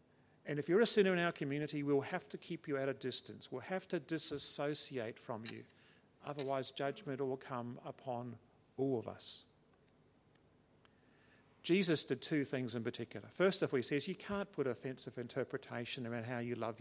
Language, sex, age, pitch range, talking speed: English, male, 50-69, 120-155 Hz, 180 wpm